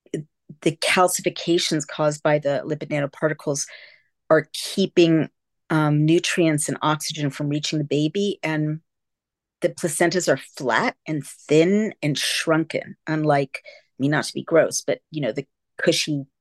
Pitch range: 145-175 Hz